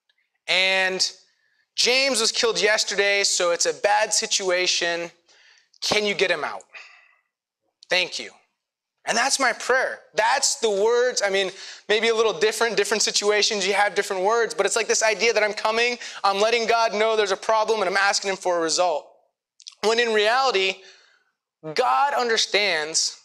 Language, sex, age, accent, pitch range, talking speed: English, male, 20-39, American, 190-260 Hz, 165 wpm